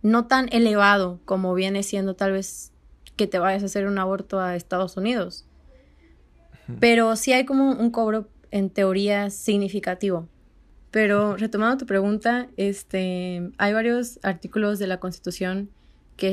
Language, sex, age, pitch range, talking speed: Spanish, female, 20-39, 180-215 Hz, 140 wpm